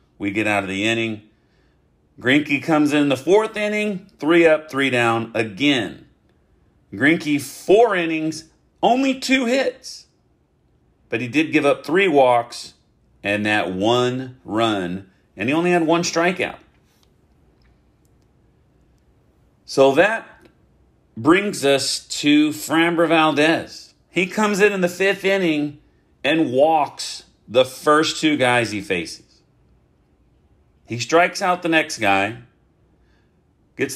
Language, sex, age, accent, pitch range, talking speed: English, male, 40-59, American, 110-165 Hz, 120 wpm